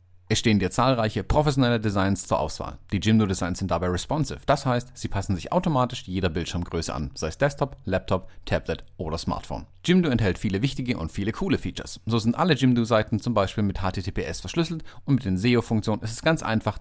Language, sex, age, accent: German, male, 40-59, German